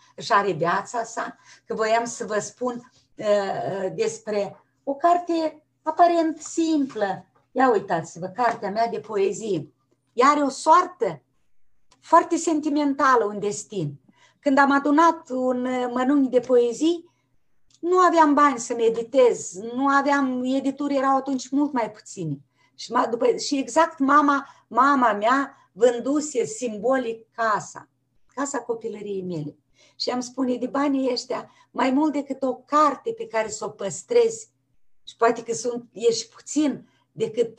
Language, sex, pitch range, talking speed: Romanian, female, 200-285 Hz, 135 wpm